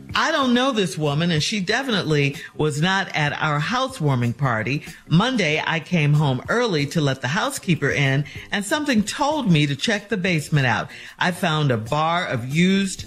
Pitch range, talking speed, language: 145-210 Hz, 180 wpm, English